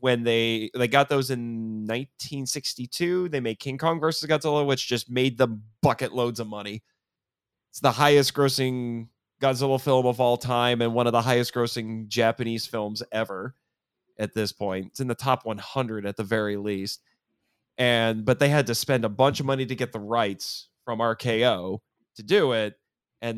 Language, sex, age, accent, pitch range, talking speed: English, male, 30-49, American, 115-145 Hz, 180 wpm